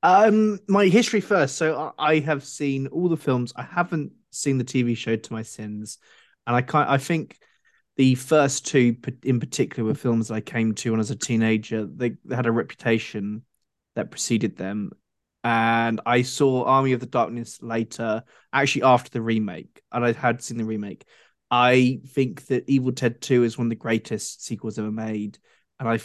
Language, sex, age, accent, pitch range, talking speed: English, male, 20-39, British, 110-130 Hz, 190 wpm